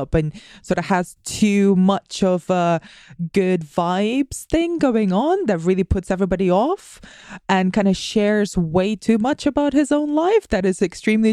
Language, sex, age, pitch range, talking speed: English, female, 20-39, 175-220 Hz, 170 wpm